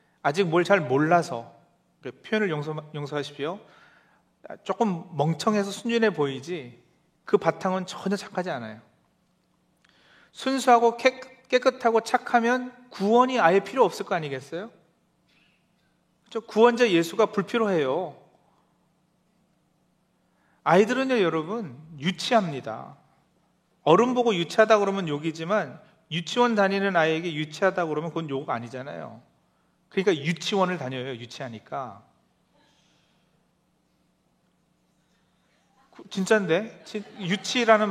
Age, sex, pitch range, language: 40-59, male, 155-210 Hz, Korean